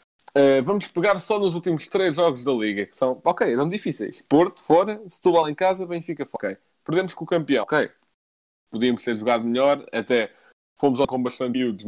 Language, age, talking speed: Portuguese, 20-39, 185 wpm